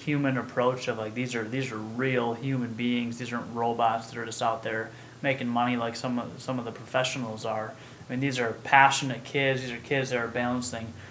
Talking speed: 220 wpm